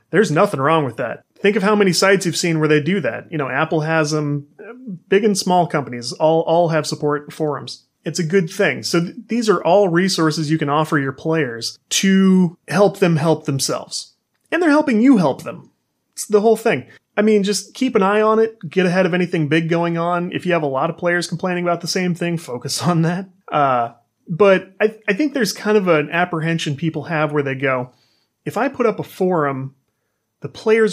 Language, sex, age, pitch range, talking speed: English, male, 30-49, 150-195 Hz, 225 wpm